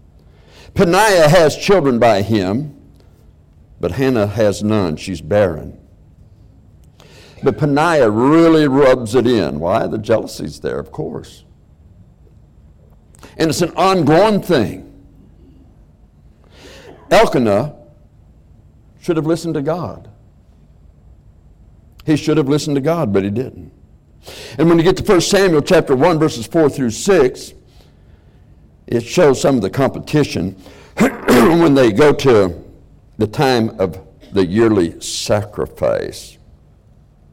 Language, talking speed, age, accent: English, 115 wpm, 60-79, American